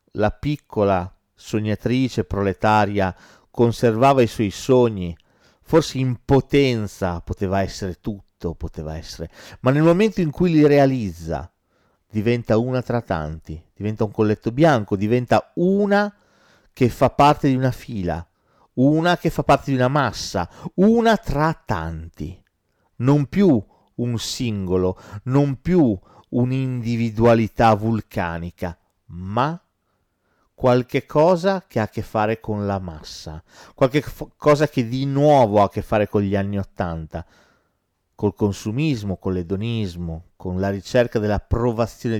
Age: 40-59